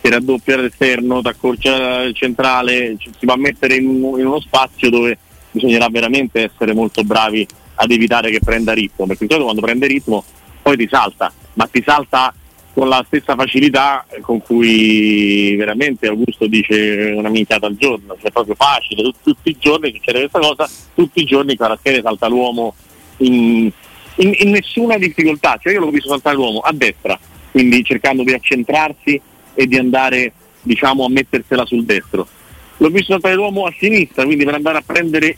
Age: 40-59